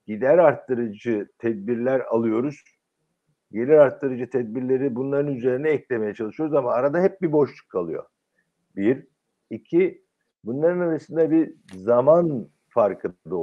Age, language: 60-79, Turkish